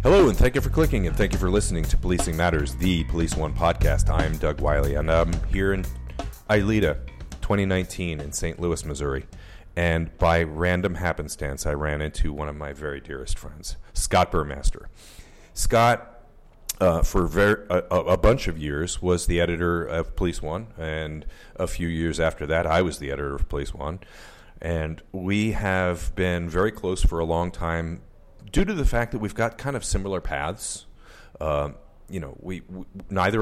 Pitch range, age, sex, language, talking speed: 80-95 Hz, 40-59, male, English, 180 wpm